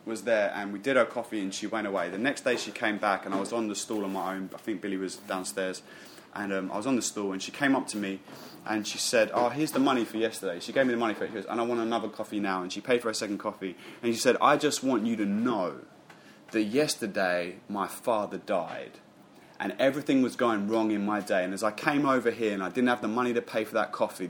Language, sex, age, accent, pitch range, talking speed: English, male, 20-39, British, 100-130 Hz, 275 wpm